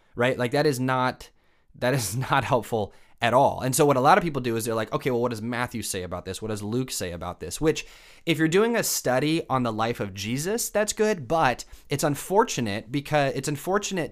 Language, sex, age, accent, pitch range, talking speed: English, male, 30-49, American, 105-145 Hz, 235 wpm